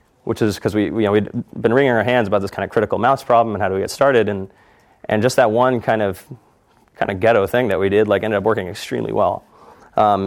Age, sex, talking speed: 30-49, male, 265 wpm